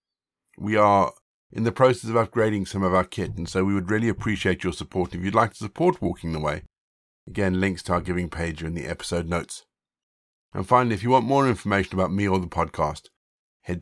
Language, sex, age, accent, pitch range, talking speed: English, male, 50-69, British, 85-105 Hz, 220 wpm